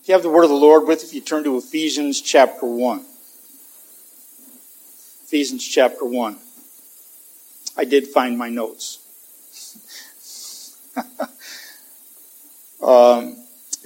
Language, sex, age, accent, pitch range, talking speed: English, male, 50-69, American, 135-225 Hz, 100 wpm